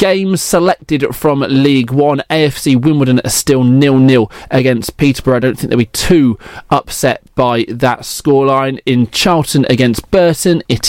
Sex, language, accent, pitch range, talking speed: male, English, British, 120-155 Hz, 150 wpm